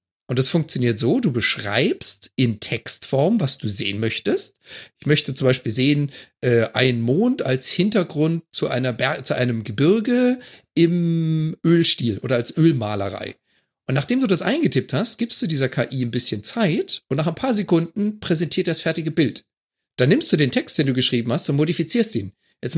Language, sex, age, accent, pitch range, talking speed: German, male, 40-59, German, 130-185 Hz, 180 wpm